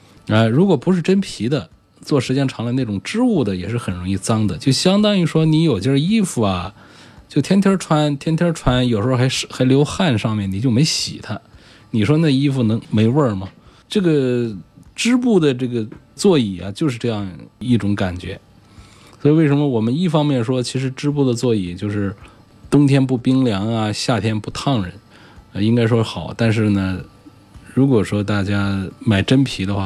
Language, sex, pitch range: Chinese, male, 100-130 Hz